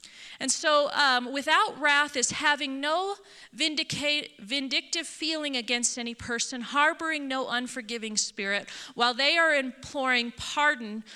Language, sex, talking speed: English, female, 125 wpm